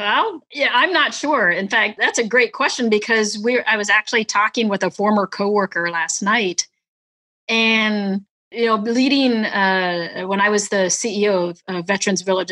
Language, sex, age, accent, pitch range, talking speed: English, female, 30-49, American, 185-225 Hz, 175 wpm